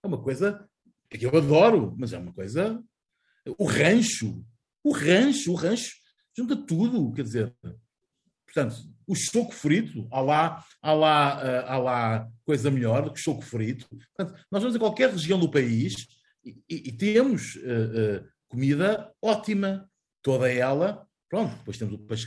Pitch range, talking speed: 115-155 Hz, 160 wpm